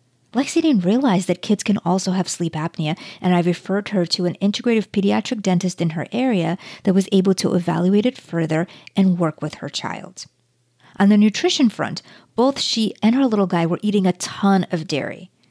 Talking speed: 195 wpm